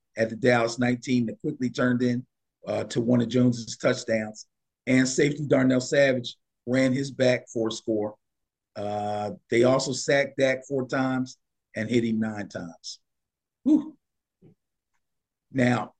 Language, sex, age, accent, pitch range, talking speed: English, male, 50-69, American, 115-140 Hz, 135 wpm